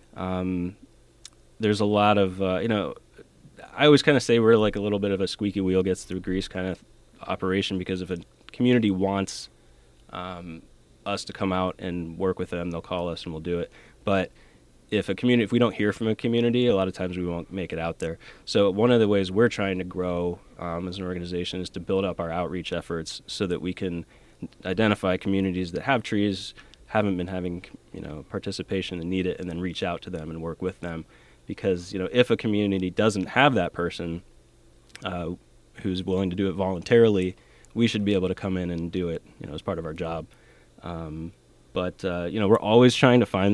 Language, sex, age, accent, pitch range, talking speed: English, male, 20-39, American, 90-100 Hz, 225 wpm